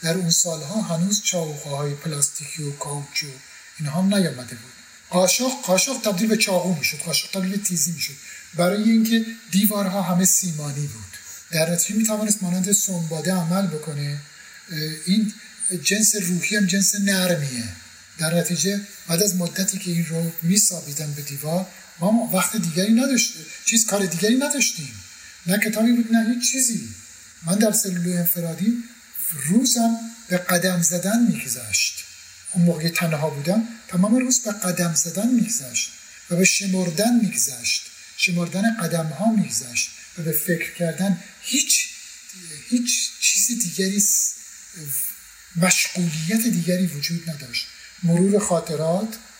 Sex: male